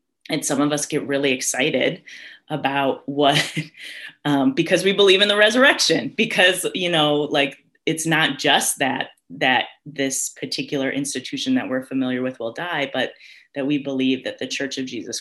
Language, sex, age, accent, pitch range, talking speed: English, female, 30-49, American, 135-180 Hz, 170 wpm